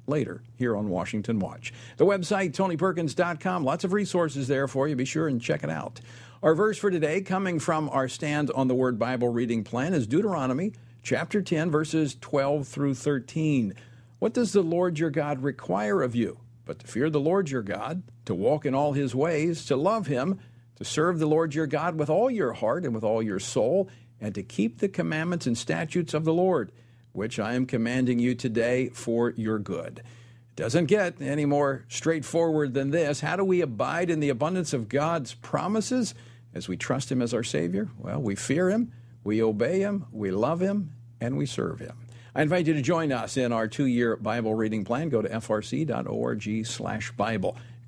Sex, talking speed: male, 200 wpm